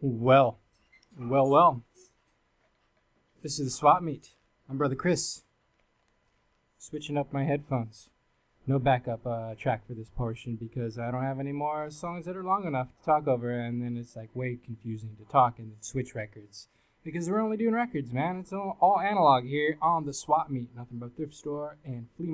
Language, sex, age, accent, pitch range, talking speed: English, male, 20-39, American, 120-150 Hz, 185 wpm